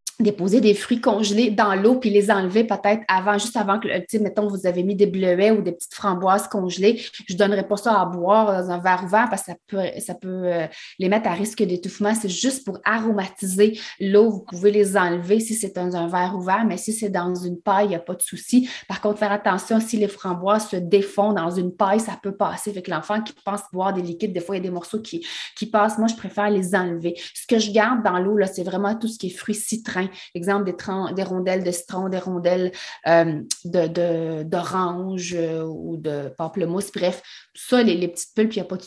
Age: 30-49